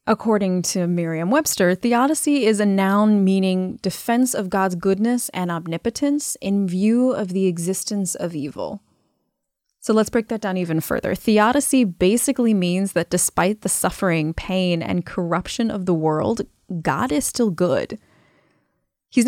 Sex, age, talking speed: female, 20-39, 145 wpm